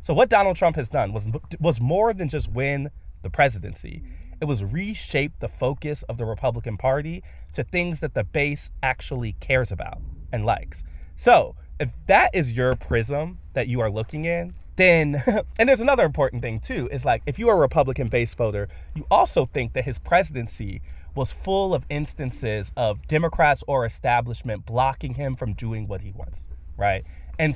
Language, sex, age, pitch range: English, male, 30-49, 100-145 Hz